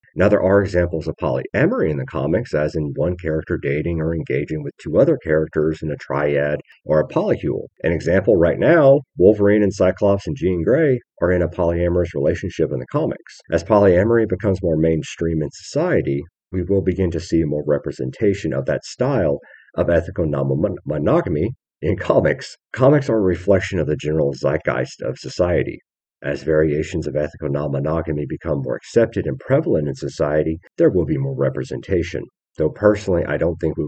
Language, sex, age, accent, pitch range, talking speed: English, male, 50-69, American, 75-95 Hz, 175 wpm